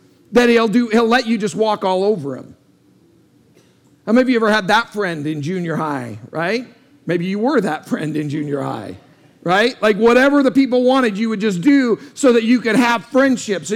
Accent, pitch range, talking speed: American, 195-245 Hz, 210 wpm